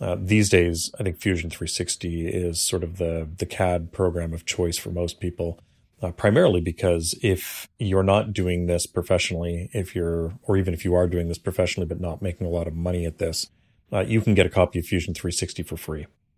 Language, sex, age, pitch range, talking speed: English, male, 40-59, 85-95 Hz, 220 wpm